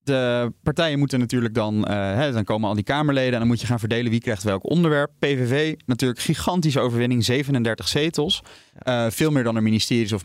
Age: 30-49